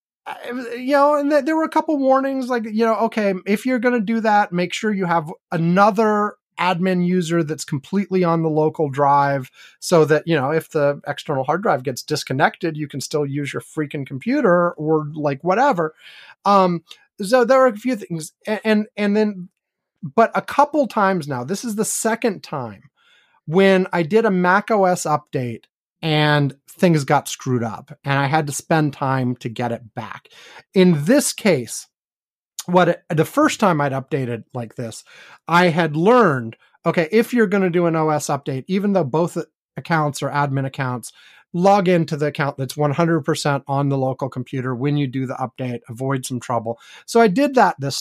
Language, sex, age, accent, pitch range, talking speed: English, male, 30-49, American, 145-205 Hz, 185 wpm